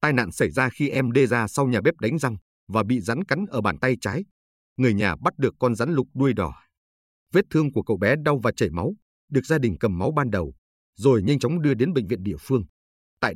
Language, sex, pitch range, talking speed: Vietnamese, male, 95-140 Hz, 250 wpm